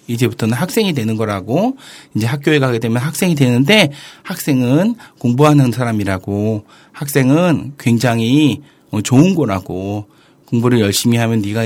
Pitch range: 110-150 Hz